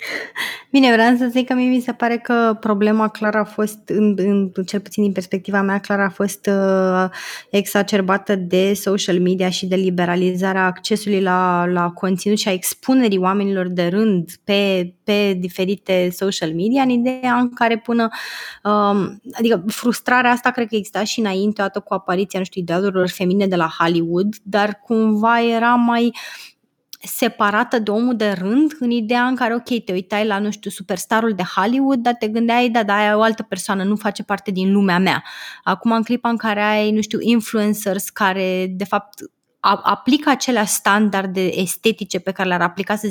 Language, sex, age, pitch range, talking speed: Romanian, female, 20-39, 190-235 Hz, 180 wpm